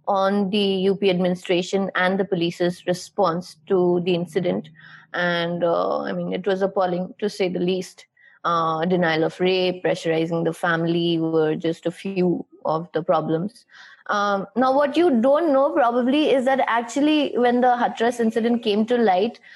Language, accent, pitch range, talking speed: English, Indian, 180-225 Hz, 165 wpm